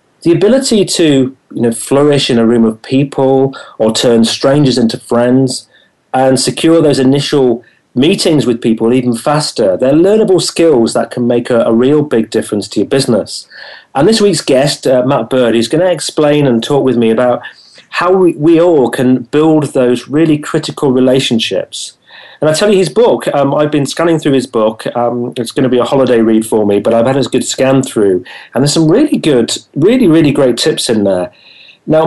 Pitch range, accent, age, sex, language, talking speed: 120-150 Hz, British, 40-59, male, English, 195 wpm